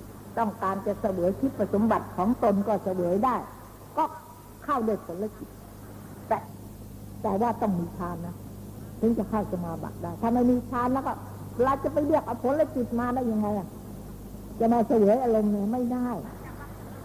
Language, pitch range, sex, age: Thai, 150-235 Hz, female, 60-79